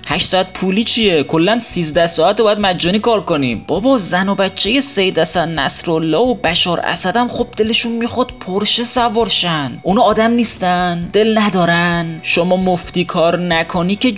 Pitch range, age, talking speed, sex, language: 150-215 Hz, 30-49, 150 wpm, male, Persian